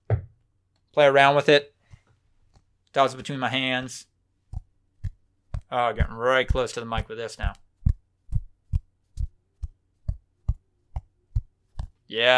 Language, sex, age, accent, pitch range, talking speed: English, male, 20-39, American, 100-130 Hz, 95 wpm